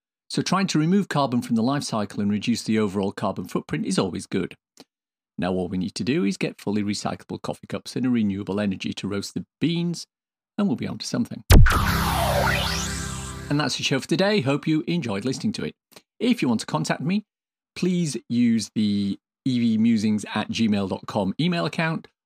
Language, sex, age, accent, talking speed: English, male, 40-59, British, 190 wpm